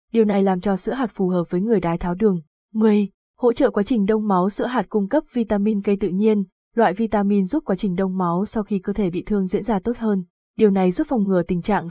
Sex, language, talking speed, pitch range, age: female, Vietnamese, 260 wpm, 190-235 Hz, 20-39